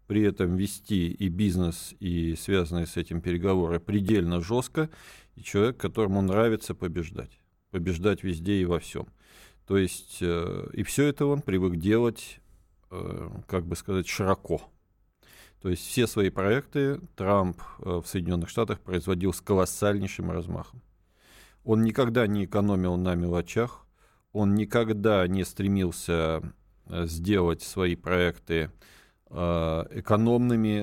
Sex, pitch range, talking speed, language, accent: male, 85-105 Hz, 120 wpm, Russian, native